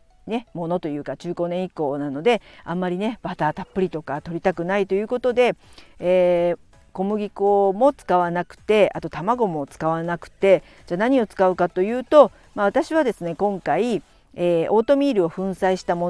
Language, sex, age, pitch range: Japanese, female, 50-69, 160-210 Hz